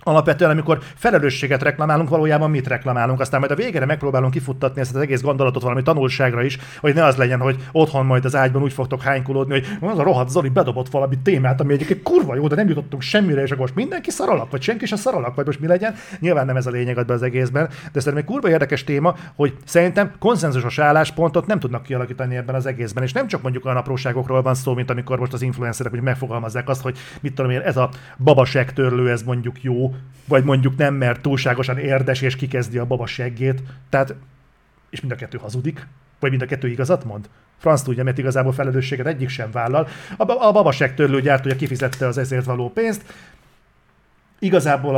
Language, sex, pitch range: Hungarian, male, 130-155 Hz